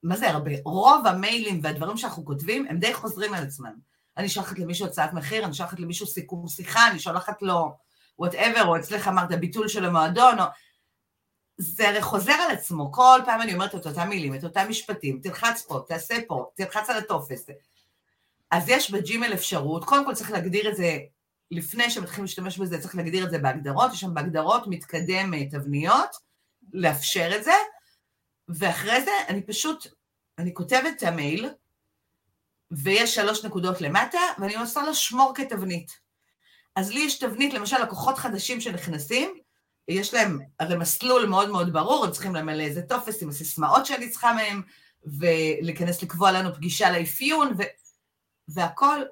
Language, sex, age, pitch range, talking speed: Hebrew, female, 40-59, 165-235 Hz, 155 wpm